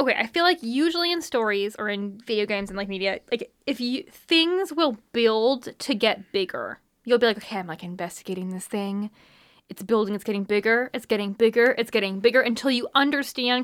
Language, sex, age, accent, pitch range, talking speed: English, female, 10-29, American, 200-250 Hz, 200 wpm